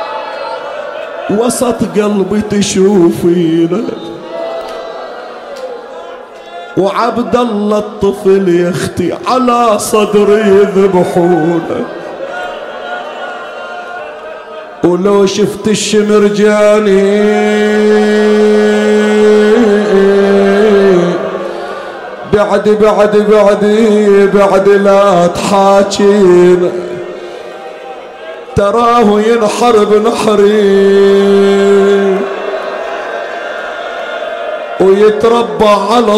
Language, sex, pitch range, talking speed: Arabic, male, 180-210 Hz, 40 wpm